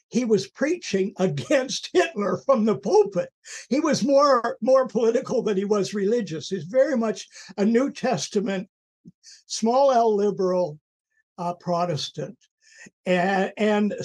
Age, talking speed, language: 60-79, 125 wpm, English